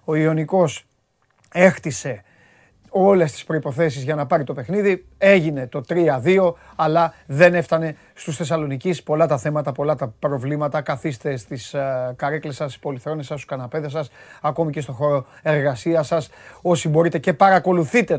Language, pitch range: Greek, 145-175 Hz